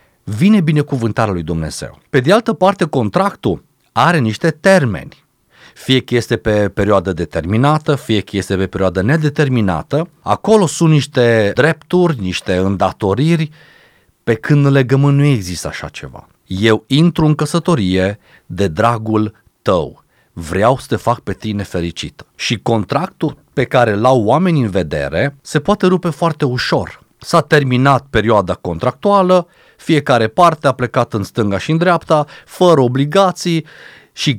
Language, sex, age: Romanian, male, 40-59